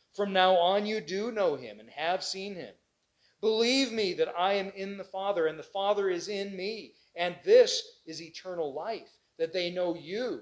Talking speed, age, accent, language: 195 wpm, 40-59, American, English